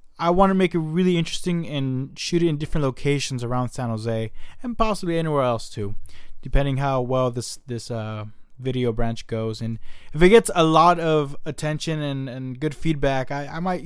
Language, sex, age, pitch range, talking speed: English, male, 20-39, 120-160 Hz, 195 wpm